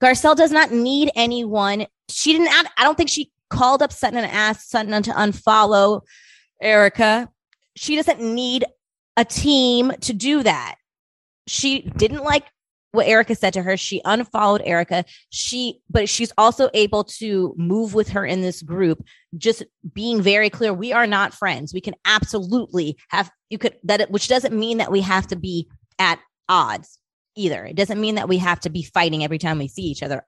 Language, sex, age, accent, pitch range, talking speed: English, female, 20-39, American, 175-235 Hz, 185 wpm